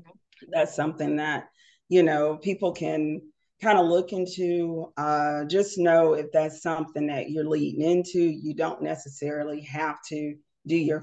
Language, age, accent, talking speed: English, 40-59, American, 150 wpm